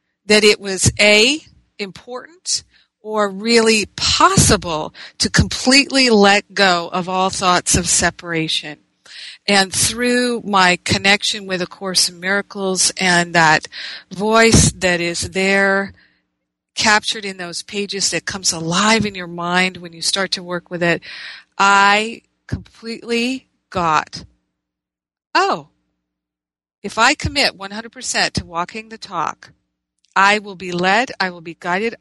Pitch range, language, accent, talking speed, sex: 175-210 Hz, English, American, 130 wpm, female